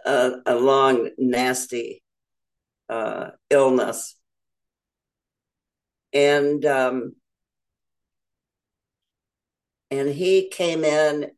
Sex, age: female, 60-79